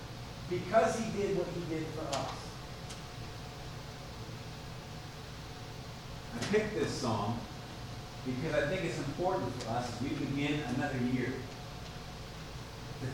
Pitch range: 135-180 Hz